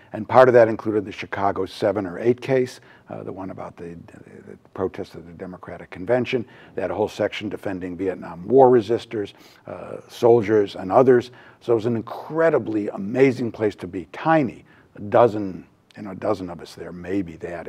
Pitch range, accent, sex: 95-125 Hz, American, male